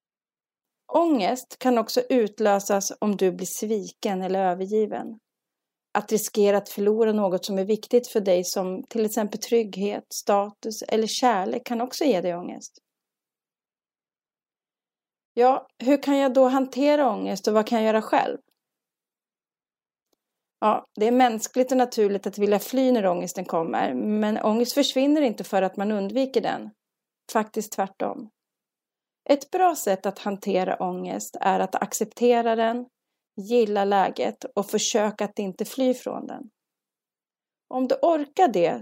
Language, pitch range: Swedish, 195-250 Hz